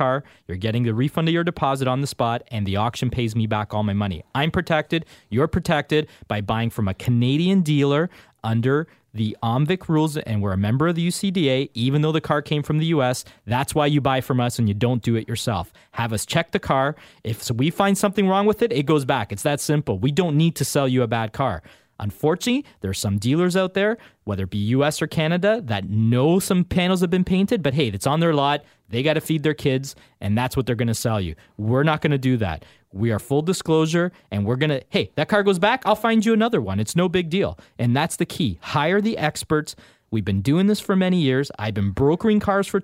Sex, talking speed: male, 245 wpm